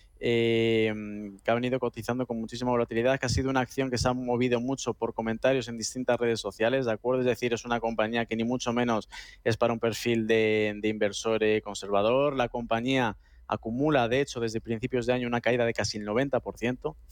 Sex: male